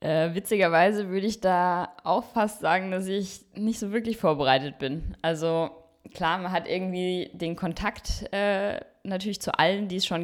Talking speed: 170 wpm